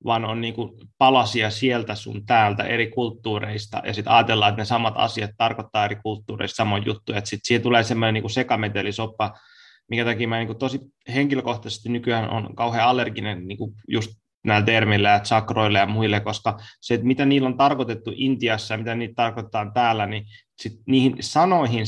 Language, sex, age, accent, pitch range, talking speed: Finnish, male, 20-39, native, 110-125 Hz, 165 wpm